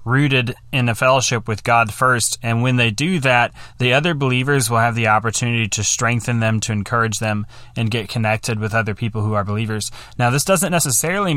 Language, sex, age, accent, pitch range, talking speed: English, male, 20-39, American, 115-140 Hz, 200 wpm